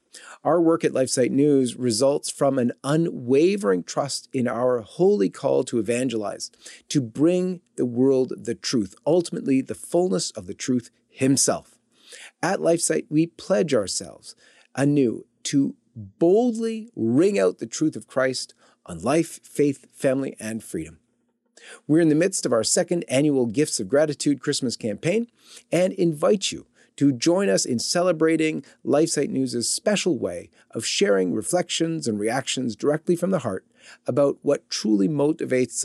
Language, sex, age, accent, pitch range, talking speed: English, male, 40-59, American, 120-165 Hz, 145 wpm